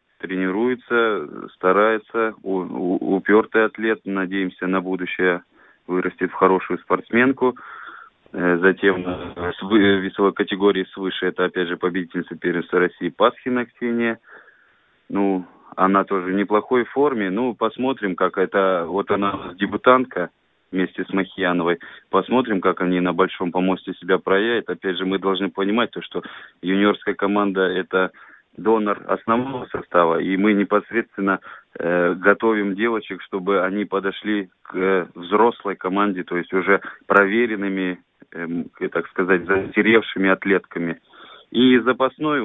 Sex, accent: male, native